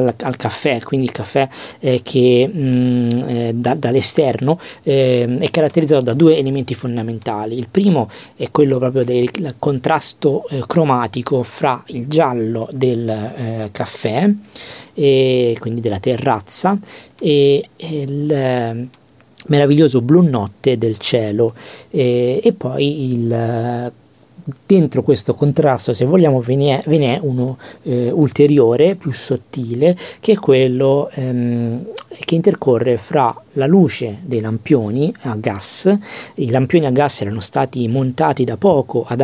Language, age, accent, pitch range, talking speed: Italian, 40-59, native, 120-145 Hz, 125 wpm